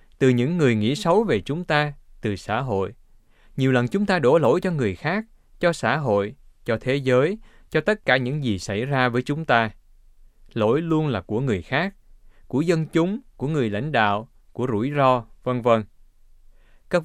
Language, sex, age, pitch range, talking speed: Vietnamese, male, 20-39, 105-155 Hz, 195 wpm